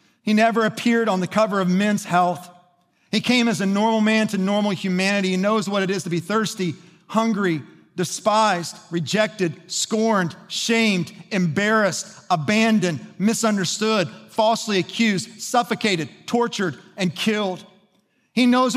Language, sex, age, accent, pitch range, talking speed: English, male, 40-59, American, 190-235 Hz, 135 wpm